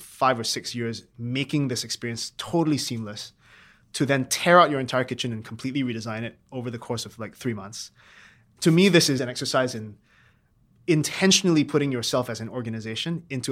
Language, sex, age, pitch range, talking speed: English, male, 20-39, 115-140 Hz, 180 wpm